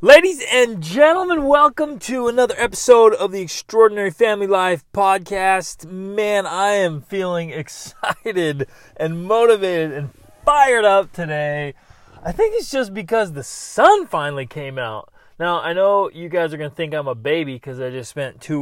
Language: English